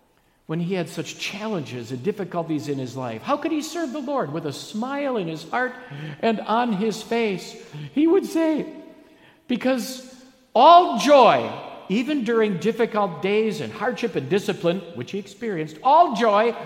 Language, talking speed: English, 160 wpm